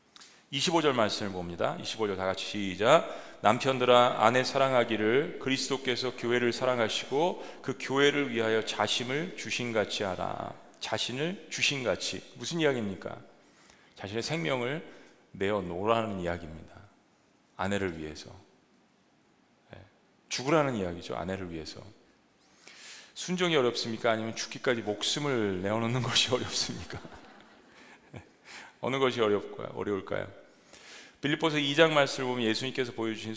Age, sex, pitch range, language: 40-59, male, 105-140 Hz, Korean